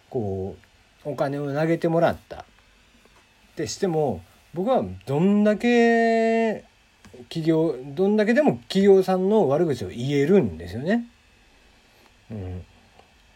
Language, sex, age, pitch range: Japanese, male, 40-59, 105-150 Hz